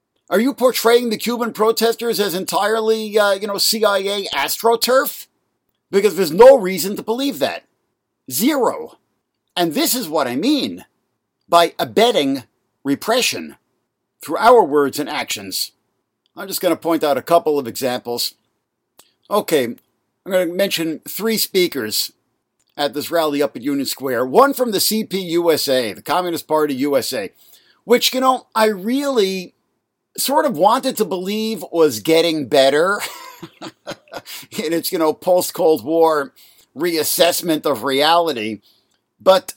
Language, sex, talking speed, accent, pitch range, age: English, male, 135 wpm, American, 165-240 Hz, 50-69